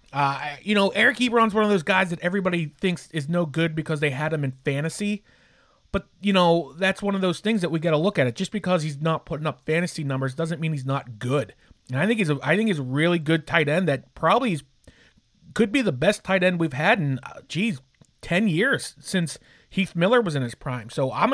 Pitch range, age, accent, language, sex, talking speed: 140-185 Hz, 30-49, American, English, male, 245 wpm